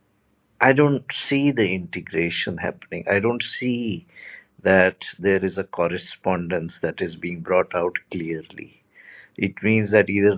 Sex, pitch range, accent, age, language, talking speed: male, 85-105 Hz, Indian, 50-69, English, 140 wpm